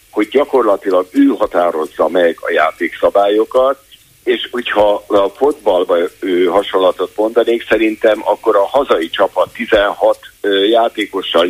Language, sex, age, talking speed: Hungarian, male, 50-69, 105 wpm